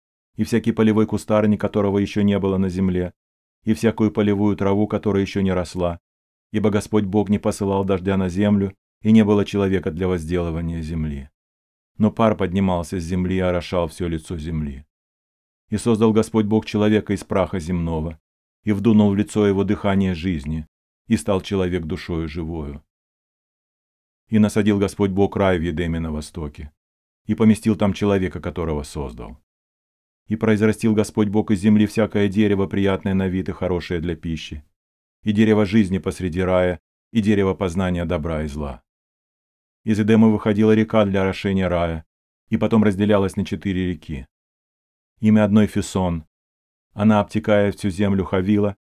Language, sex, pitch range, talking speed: Russian, male, 80-105 Hz, 155 wpm